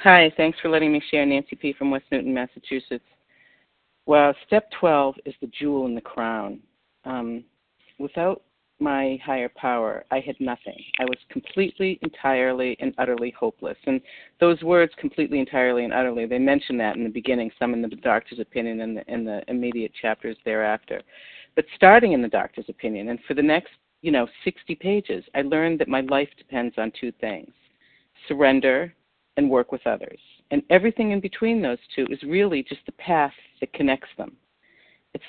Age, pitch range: 40-59, 125-165 Hz